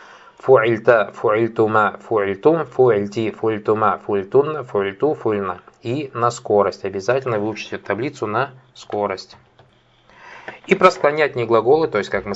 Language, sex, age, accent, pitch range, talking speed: Russian, male, 20-39, native, 100-120 Hz, 100 wpm